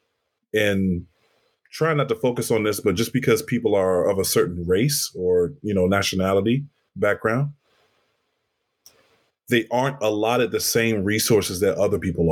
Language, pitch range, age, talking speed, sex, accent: English, 100-140 Hz, 20-39, 155 wpm, male, American